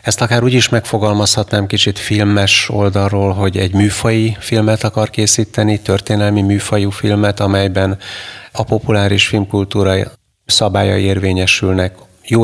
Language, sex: Hungarian, male